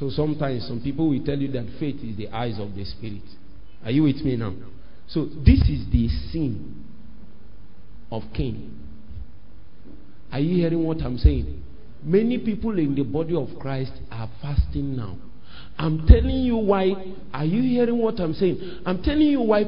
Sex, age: male, 50-69